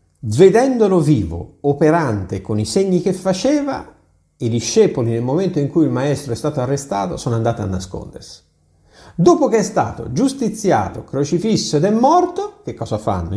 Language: Italian